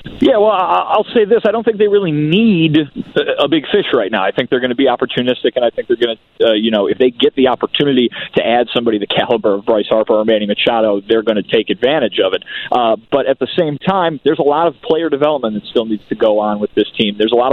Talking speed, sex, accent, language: 270 wpm, male, American, English